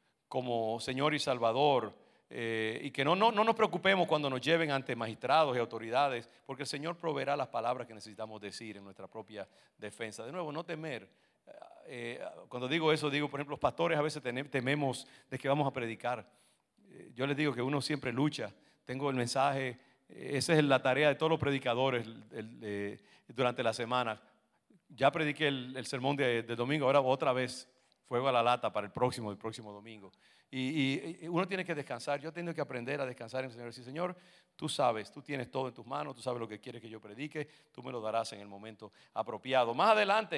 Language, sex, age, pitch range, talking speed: English, male, 50-69, 115-145 Hz, 210 wpm